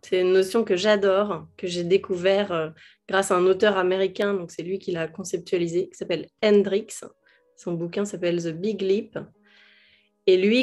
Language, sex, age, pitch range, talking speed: French, female, 20-39, 185-220 Hz, 170 wpm